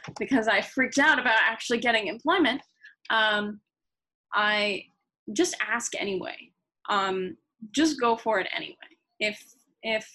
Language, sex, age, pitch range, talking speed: English, female, 10-29, 190-235 Hz, 125 wpm